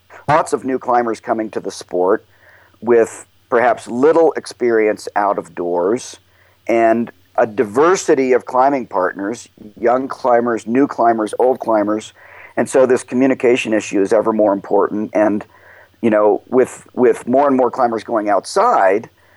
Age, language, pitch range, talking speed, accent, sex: 50-69, English, 110-125 Hz, 145 wpm, American, male